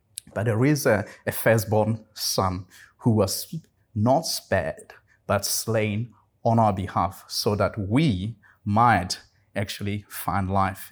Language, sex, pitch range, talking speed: English, male, 100-115 Hz, 125 wpm